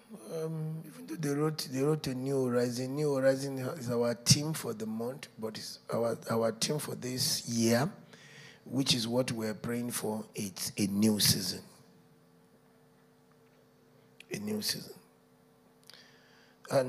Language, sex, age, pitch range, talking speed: English, male, 50-69, 120-150 Hz, 135 wpm